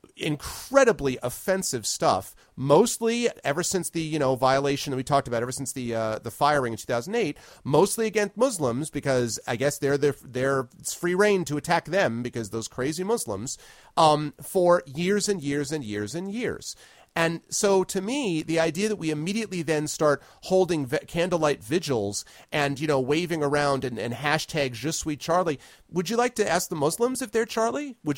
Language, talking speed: English, 185 wpm